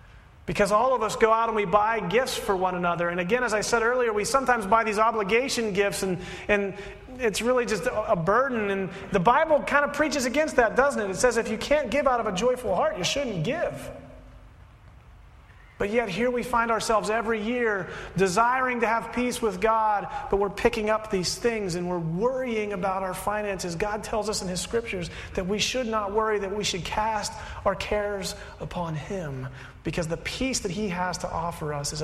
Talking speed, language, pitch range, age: 210 wpm, English, 180-225 Hz, 30-49